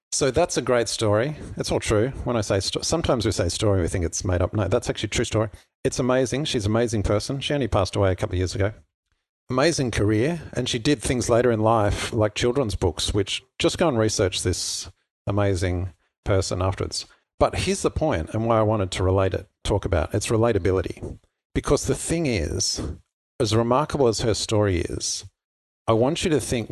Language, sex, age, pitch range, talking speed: English, male, 50-69, 95-120 Hz, 205 wpm